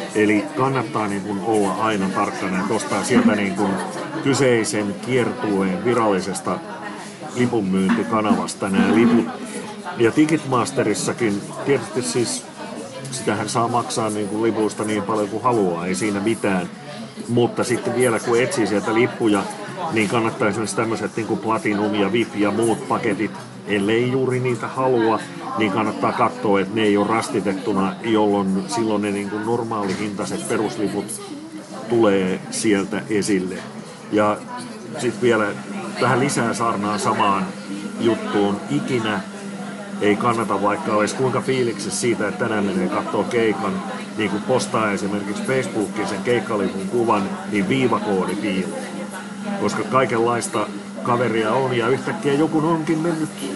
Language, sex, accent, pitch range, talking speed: Finnish, male, native, 100-125 Hz, 125 wpm